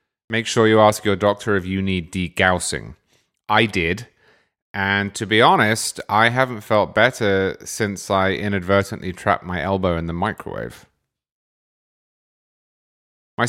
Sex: male